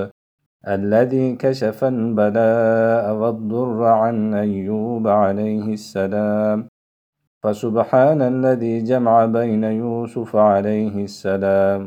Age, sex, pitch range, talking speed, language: 40-59, male, 105-130 Hz, 75 wpm, Turkish